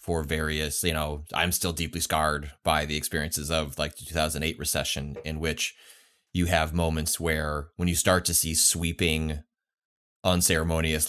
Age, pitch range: 30-49, 80-90 Hz